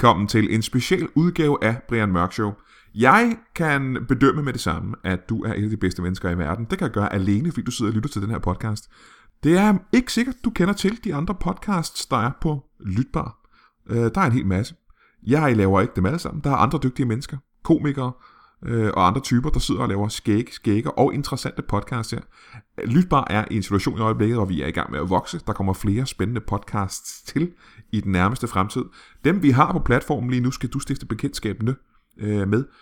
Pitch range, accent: 100-135 Hz, native